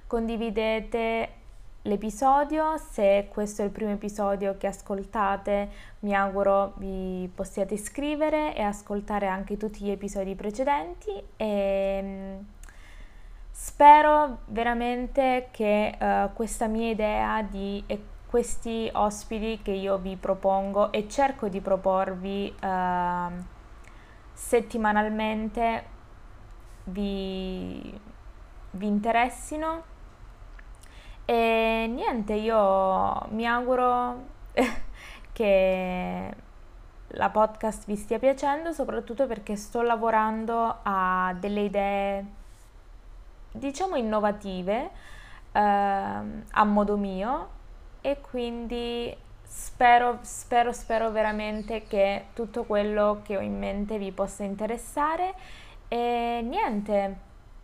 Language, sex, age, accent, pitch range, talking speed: Italian, female, 20-39, native, 195-235 Hz, 90 wpm